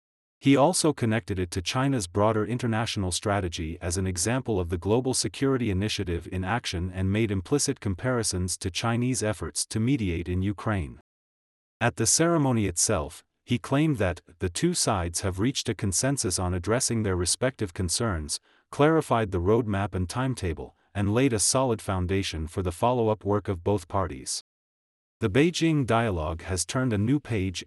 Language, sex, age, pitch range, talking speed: English, male, 40-59, 90-120 Hz, 165 wpm